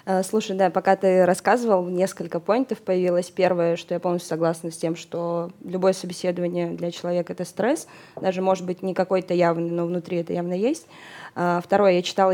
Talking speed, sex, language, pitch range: 175 wpm, female, Russian, 175-190 Hz